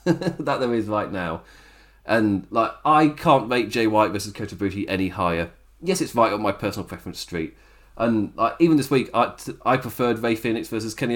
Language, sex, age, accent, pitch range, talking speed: English, male, 30-49, British, 100-140 Hz, 205 wpm